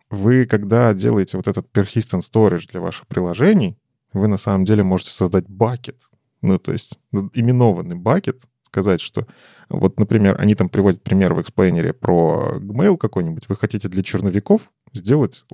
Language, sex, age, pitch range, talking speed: Russian, male, 20-39, 100-135 Hz, 155 wpm